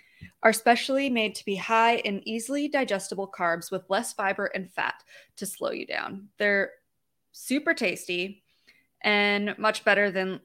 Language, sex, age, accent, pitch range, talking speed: English, female, 20-39, American, 180-220 Hz, 150 wpm